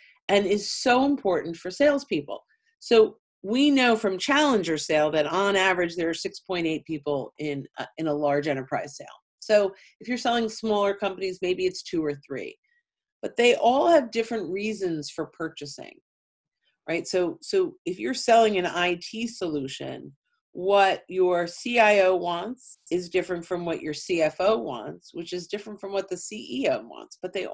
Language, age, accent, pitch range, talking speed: English, 40-59, American, 165-225 Hz, 160 wpm